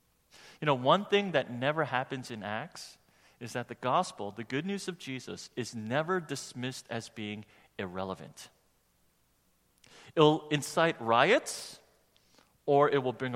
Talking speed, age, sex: 145 wpm, 40-59, male